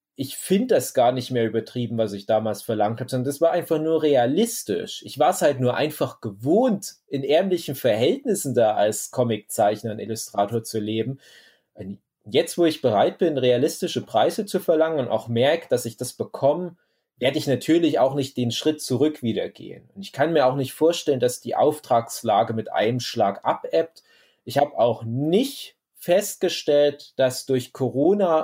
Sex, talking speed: male, 175 wpm